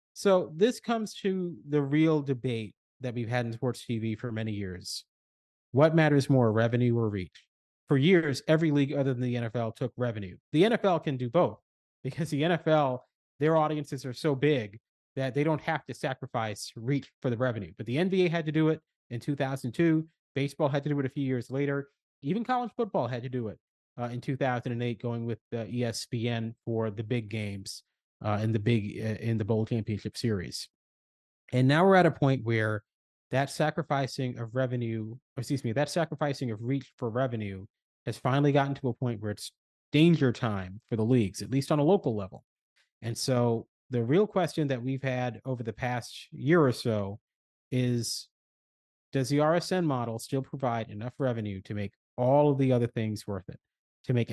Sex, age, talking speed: male, 30-49, 195 wpm